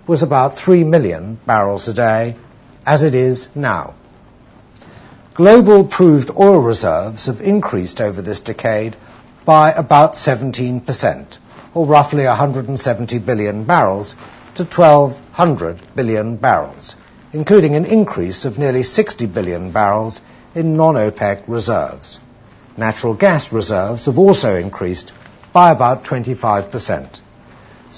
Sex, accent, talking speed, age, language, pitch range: male, British, 110 wpm, 60-79, English, 115-160 Hz